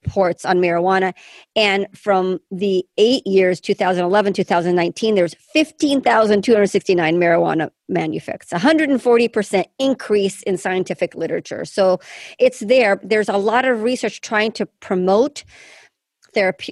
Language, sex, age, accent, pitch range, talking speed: English, male, 40-59, American, 185-230 Hz, 110 wpm